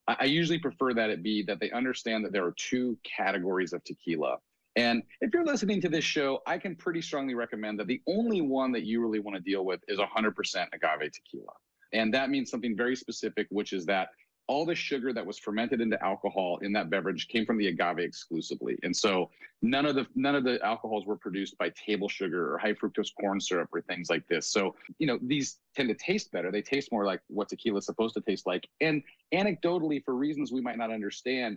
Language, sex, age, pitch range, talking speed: English, male, 40-59, 105-150 Hz, 225 wpm